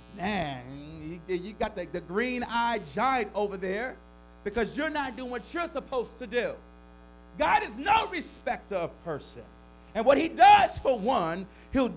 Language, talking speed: English, 160 wpm